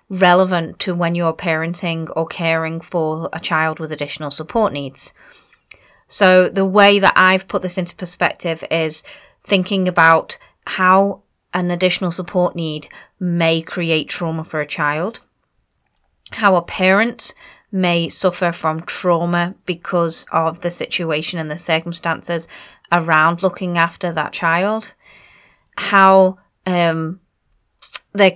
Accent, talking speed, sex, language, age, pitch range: British, 125 wpm, female, English, 30-49, 170-200 Hz